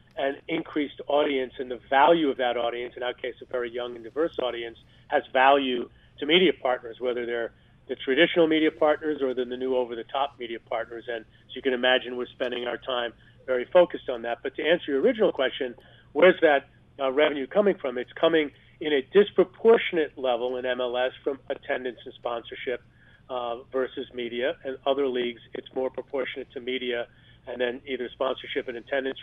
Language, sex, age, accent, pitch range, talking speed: English, male, 40-59, American, 120-140 Hz, 185 wpm